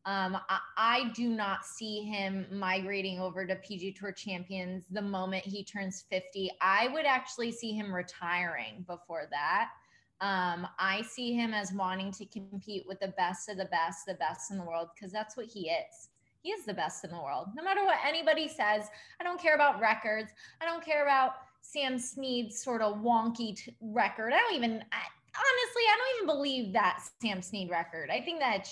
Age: 20-39